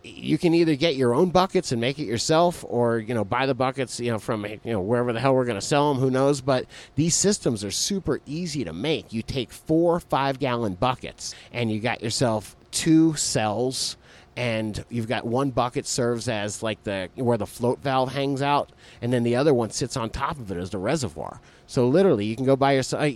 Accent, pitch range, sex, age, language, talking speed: American, 115-140 Hz, male, 30-49, English, 225 wpm